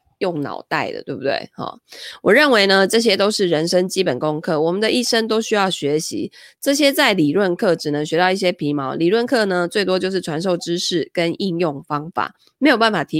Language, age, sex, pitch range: Chinese, 20-39, female, 160-220 Hz